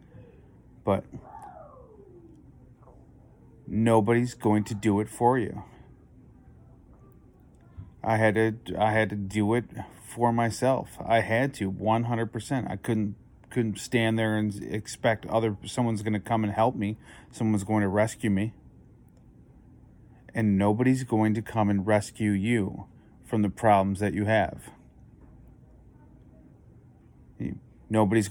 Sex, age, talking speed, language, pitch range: male, 30-49, 120 wpm, English, 105-120 Hz